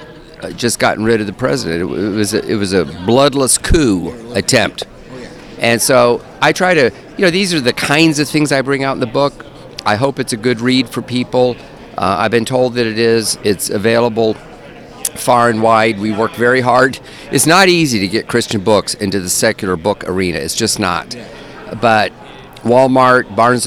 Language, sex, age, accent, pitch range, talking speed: English, male, 50-69, American, 105-125 Hz, 190 wpm